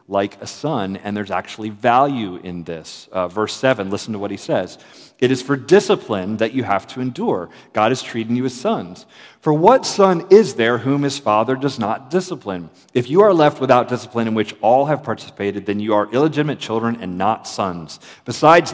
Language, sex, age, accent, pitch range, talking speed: English, male, 40-59, American, 95-125 Hz, 200 wpm